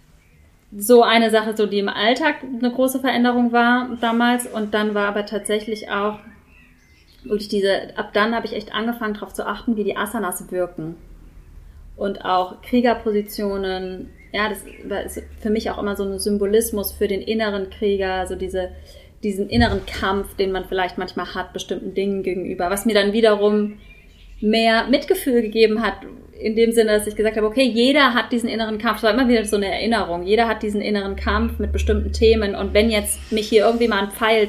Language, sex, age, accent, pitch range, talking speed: German, female, 20-39, German, 195-225 Hz, 190 wpm